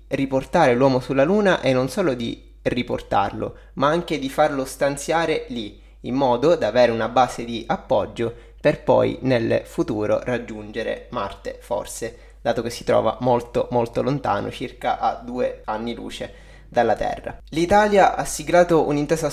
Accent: native